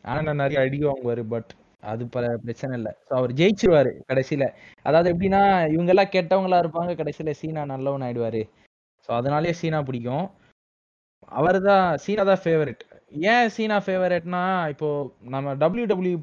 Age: 20-39